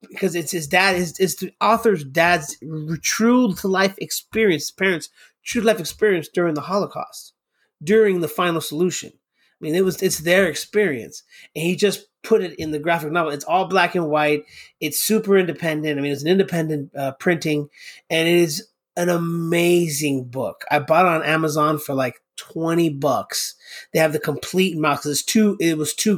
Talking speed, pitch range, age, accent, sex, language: 185 wpm, 150-185 Hz, 30-49, American, male, English